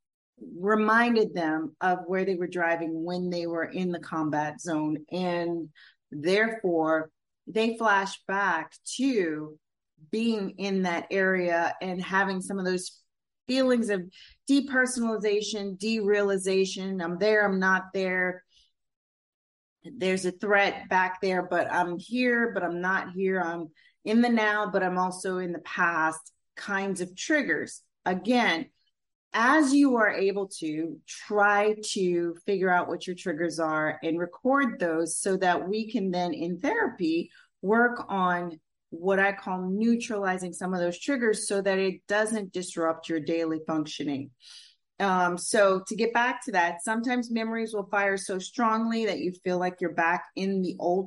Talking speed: 150 wpm